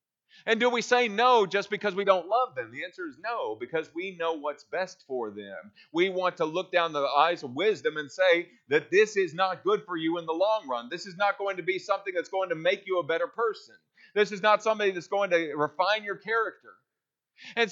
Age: 40-59